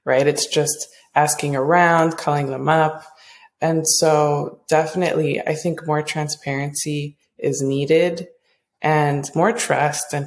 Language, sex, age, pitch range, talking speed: English, female, 20-39, 145-165 Hz, 125 wpm